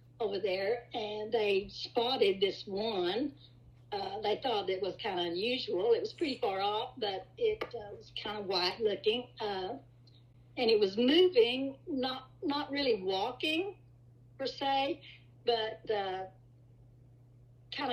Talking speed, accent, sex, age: 140 wpm, American, female, 60-79